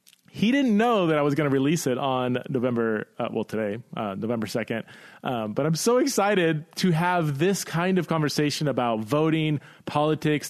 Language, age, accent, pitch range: English, 30-49, American, 130-165 Hz